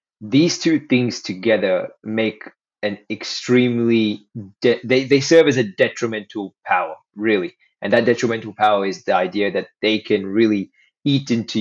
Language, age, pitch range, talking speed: English, 20-39, 100-125 Hz, 150 wpm